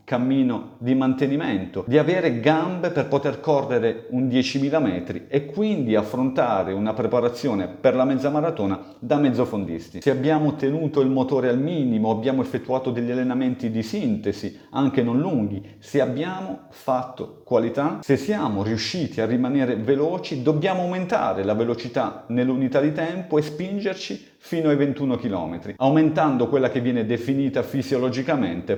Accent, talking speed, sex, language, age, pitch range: native, 140 wpm, male, Italian, 40-59, 120-145 Hz